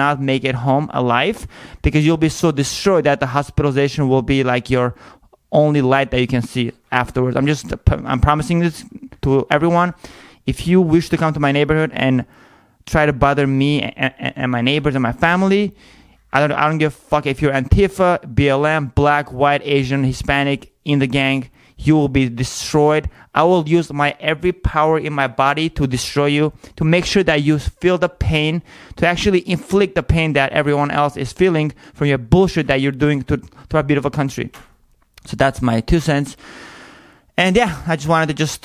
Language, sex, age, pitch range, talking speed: English, male, 30-49, 130-155 Hz, 195 wpm